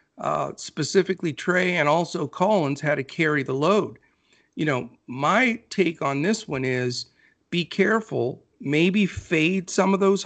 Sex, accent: male, American